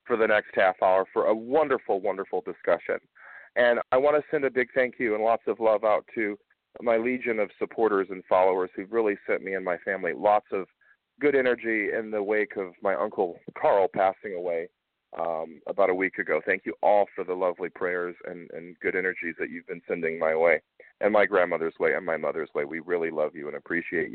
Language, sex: English, male